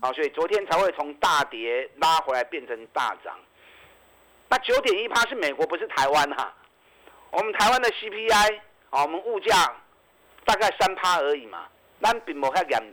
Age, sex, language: 50-69, male, Chinese